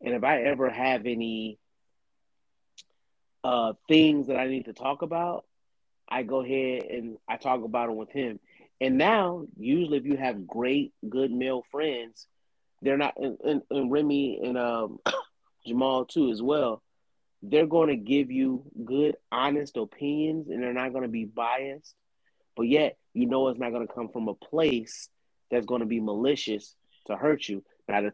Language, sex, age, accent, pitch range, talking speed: English, male, 30-49, American, 120-145 Hz, 175 wpm